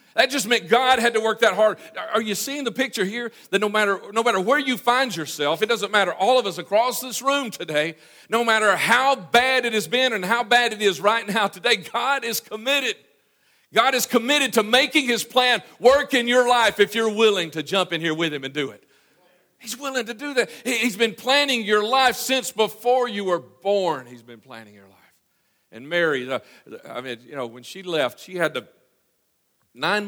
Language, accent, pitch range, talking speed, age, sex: English, American, 140-230 Hz, 225 wpm, 50-69, male